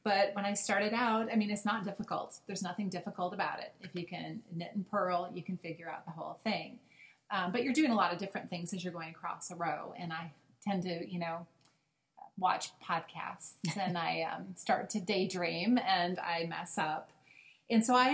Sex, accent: female, American